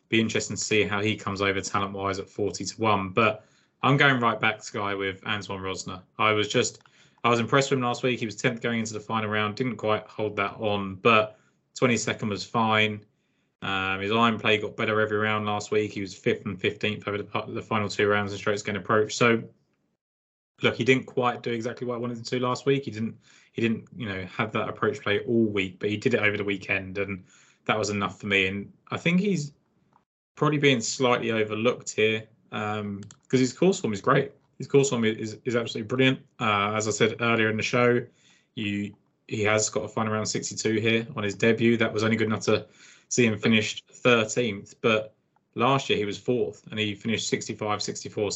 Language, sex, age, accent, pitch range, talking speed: English, male, 20-39, British, 100-115 Hz, 220 wpm